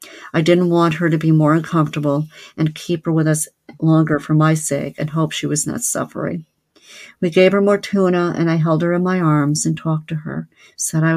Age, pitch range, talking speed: 50-69, 155-175 Hz, 220 wpm